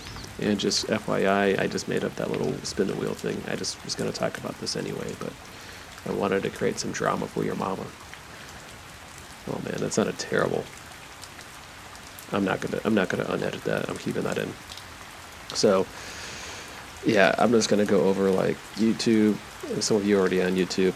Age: 30-49